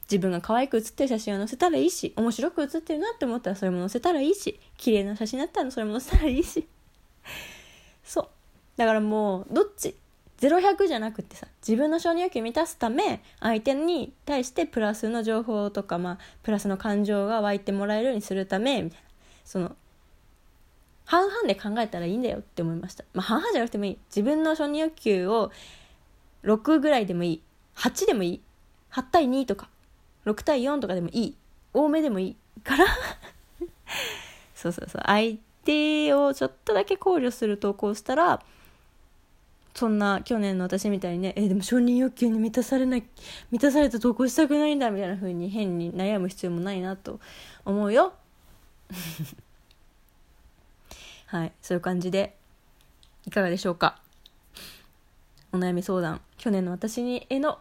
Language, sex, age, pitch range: Japanese, female, 20-39, 190-280 Hz